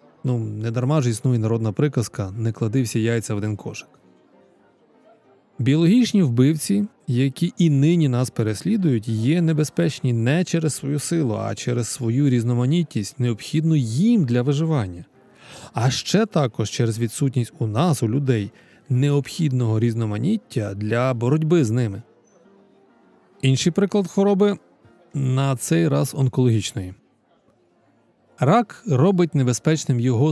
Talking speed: 120 wpm